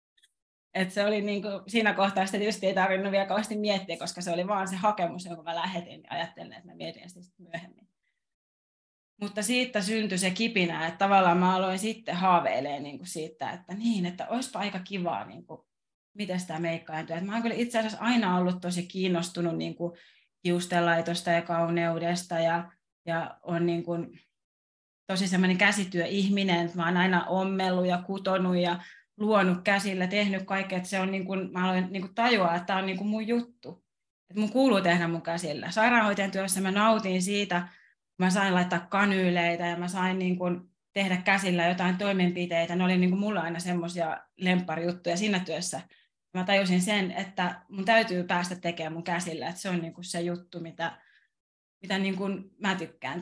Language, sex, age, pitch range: Finnish, female, 30-49, 170-195 Hz